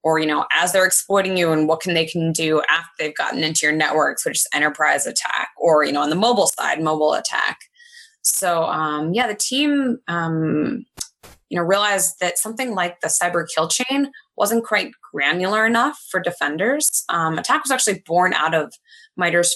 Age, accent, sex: 20-39, American, female